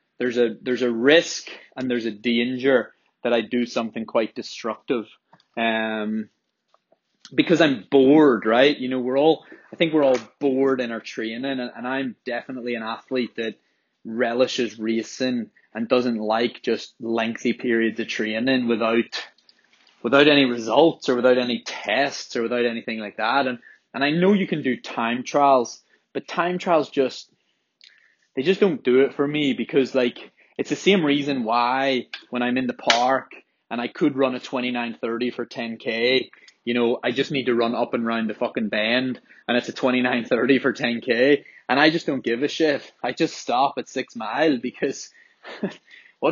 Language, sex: English, male